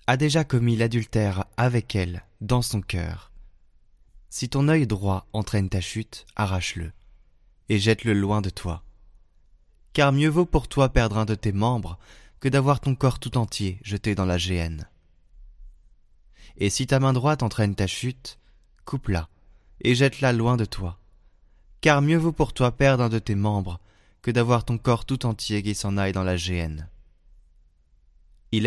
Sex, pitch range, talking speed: male, 90-120 Hz, 165 wpm